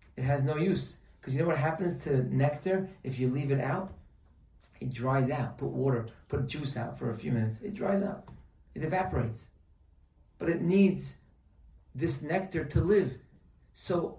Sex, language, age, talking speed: male, English, 40-59, 175 wpm